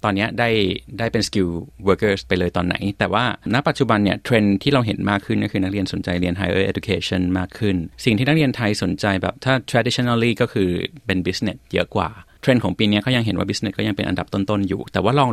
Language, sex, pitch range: Thai, male, 95-115 Hz